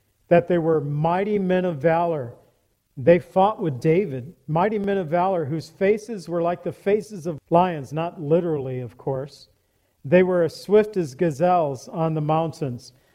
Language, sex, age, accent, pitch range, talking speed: English, male, 50-69, American, 145-180 Hz, 165 wpm